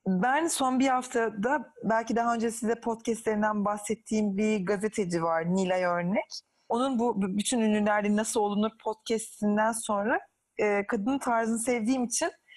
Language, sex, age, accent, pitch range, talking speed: Turkish, female, 30-49, native, 195-260 Hz, 135 wpm